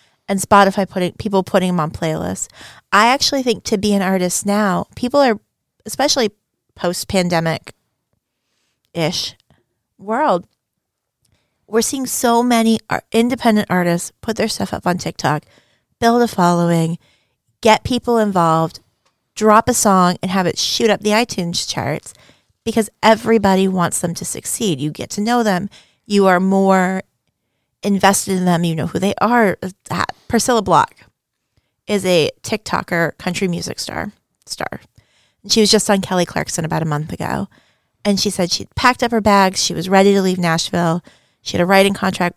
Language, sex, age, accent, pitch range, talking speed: English, female, 30-49, American, 175-215 Hz, 155 wpm